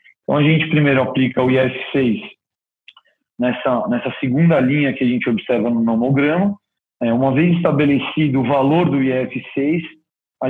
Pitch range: 130-155 Hz